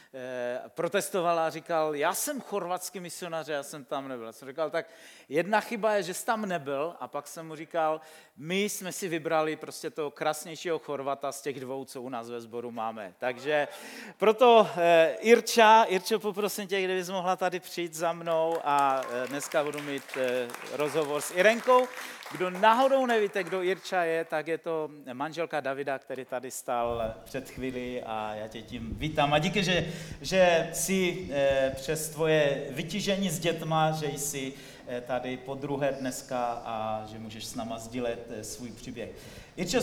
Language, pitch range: Czech, 135-185 Hz